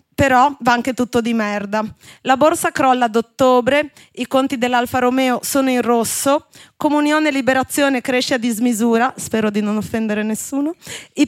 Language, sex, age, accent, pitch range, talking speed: Italian, female, 20-39, native, 230-280 Hz, 160 wpm